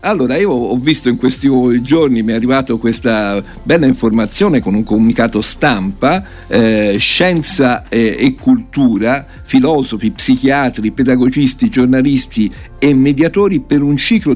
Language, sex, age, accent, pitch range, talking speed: Italian, male, 50-69, native, 115-175 Hz, 130 wpm